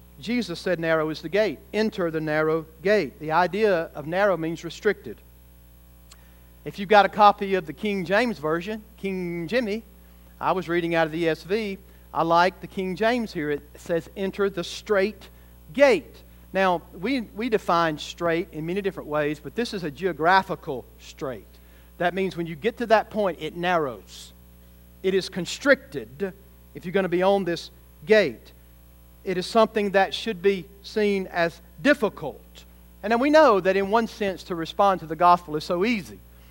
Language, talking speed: English, 175 wpm